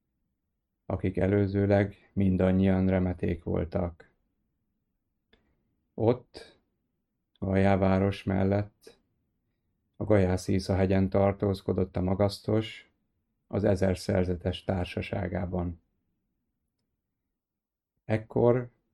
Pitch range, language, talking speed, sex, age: 90-100 Hz, Hungarian, 65 wpm, male, 30-49